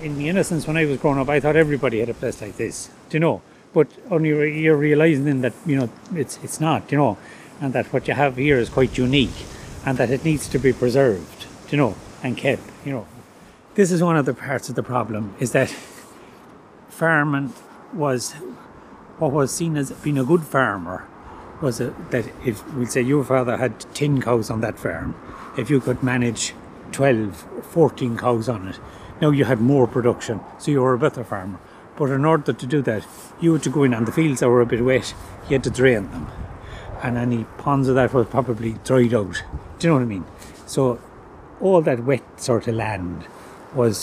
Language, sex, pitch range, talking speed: English, male, 115-145 Hz, 215 wpm